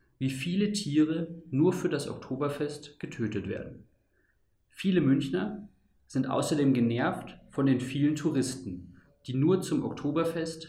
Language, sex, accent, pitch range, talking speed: German, male, German, 115-155 Hz, 125 wpm